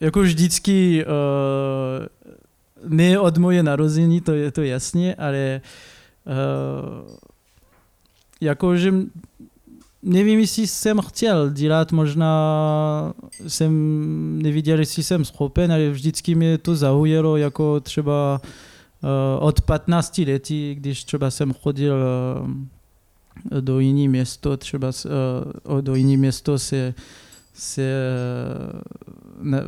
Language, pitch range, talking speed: Czech, 130-150 Hz, 95 wpm